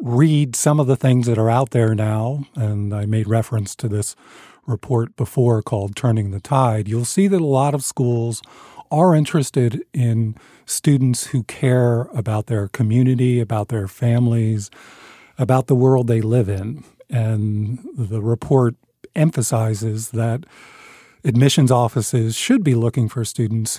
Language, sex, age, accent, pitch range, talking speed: English, male, 50-69, American, 110-130 Hz, 150 wpm